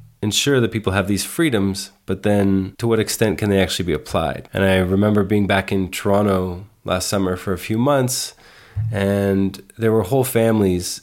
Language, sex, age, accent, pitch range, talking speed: English, male, 20-39, American, 95-110 Hz, 185 wpm